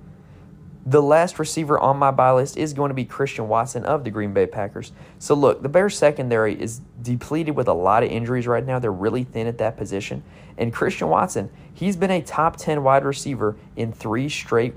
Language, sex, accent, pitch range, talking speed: English, male, American, 110-145 Hz, 205 wpm